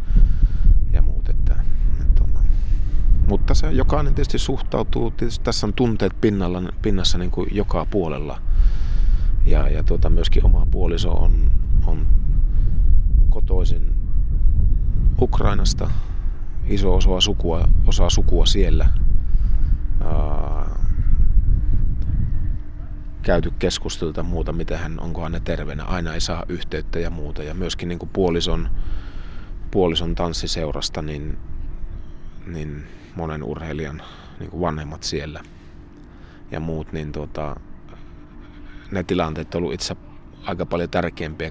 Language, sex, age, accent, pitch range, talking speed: Finnish, male, 30-49, native, 75-90 Hz, 105 wpm